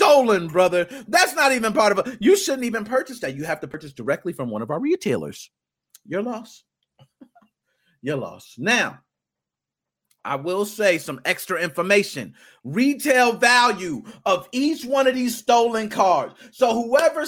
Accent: American